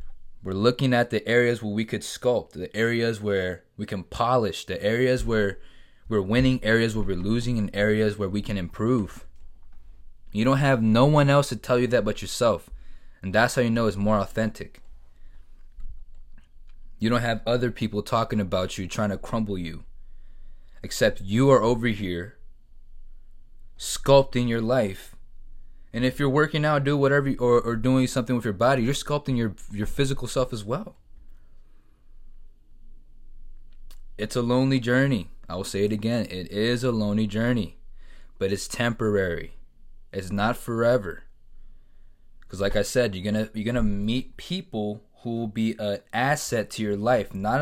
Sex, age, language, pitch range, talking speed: male, 20-39, English, 100-125 Hz, 165 wpm